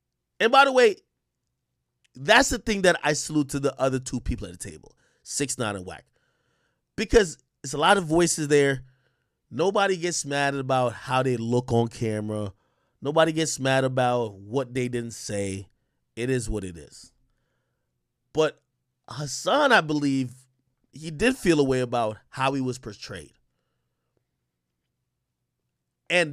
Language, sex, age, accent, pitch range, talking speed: English, male, 30-49, American, 105-145 Hz, 150 wpm